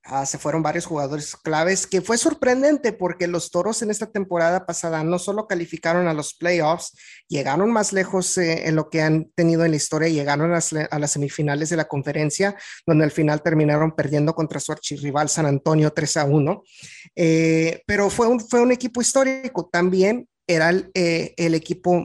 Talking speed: 190 wpm